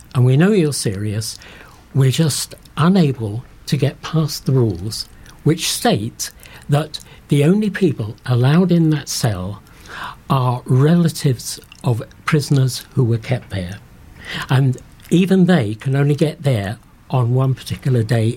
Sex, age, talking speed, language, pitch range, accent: male, 60-79, 135 wpm, English, 120-155 Hz, British